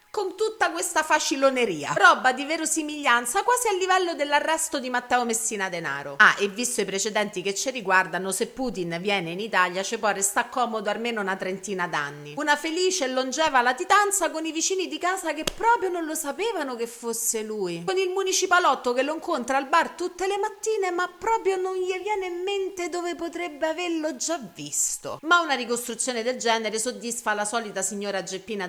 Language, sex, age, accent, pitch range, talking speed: Italian, female, 40-59, native, 215-315 Hz, 180 wpm